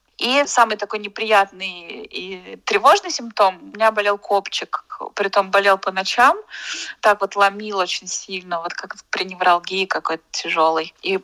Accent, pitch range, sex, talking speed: native, 195-235 Hz, female, 145 wpm